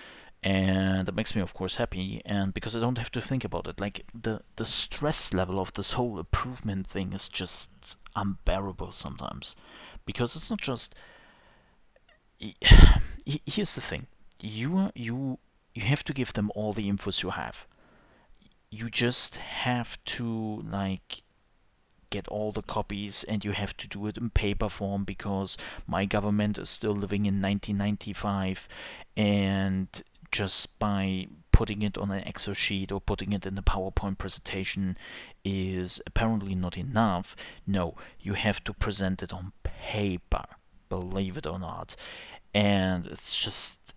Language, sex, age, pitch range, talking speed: English, male, 30-49, 95-105 Hz, 150 wpm